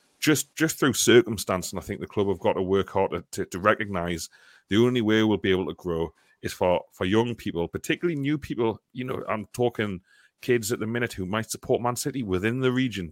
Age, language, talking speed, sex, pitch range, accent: 30-49, English, 230 wpm, male, 90-110 Hz, British